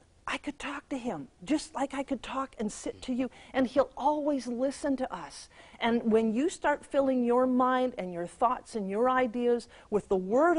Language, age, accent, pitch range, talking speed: English, 50-69, American, 195-255 Hz, 205 wpm